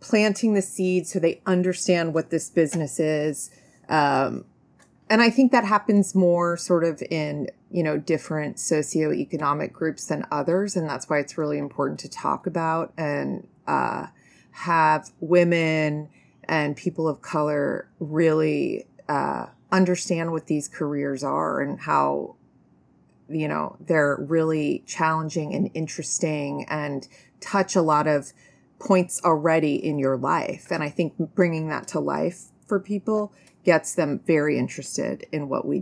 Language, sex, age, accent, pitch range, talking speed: English, female, 30-49, American, 155-190 Hz, 145 wpm